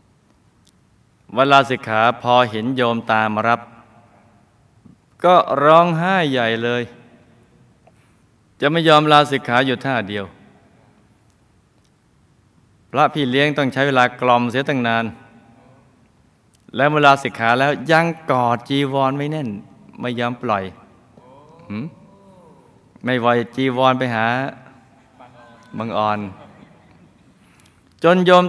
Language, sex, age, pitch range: Thai, male, 20-39, 110-140 Hz